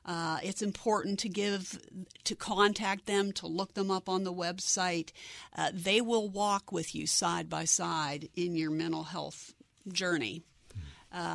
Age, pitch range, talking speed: 50-69, 170-205 Hz, 160 wpm